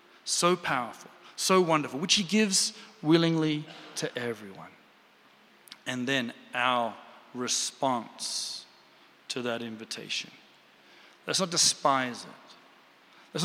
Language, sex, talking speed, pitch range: English, male, 100 wpm, 120-165 Hz